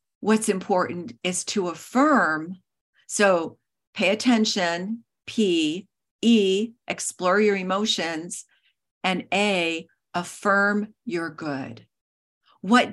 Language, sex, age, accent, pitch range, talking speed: English, female, 50-69, American, 175-225 Hz, 90 wpm